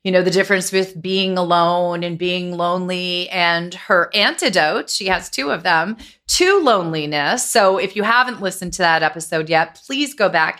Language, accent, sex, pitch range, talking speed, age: English, American, female, 160-205 Hz, 180 wpm, 30-49